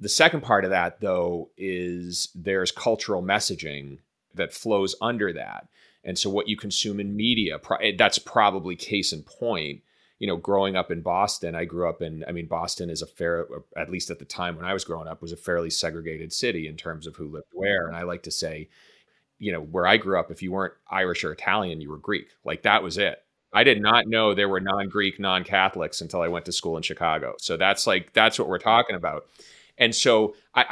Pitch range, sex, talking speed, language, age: 85-100 Hz, male, 220 wpm, English, 30-49